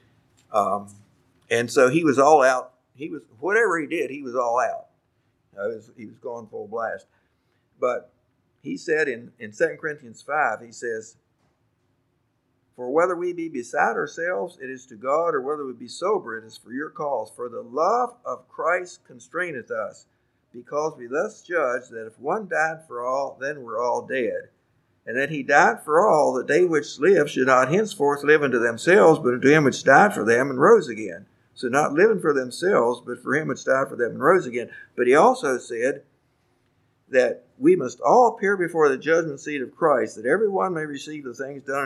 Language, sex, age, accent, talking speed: English, male, 50-69, American, 195 wpm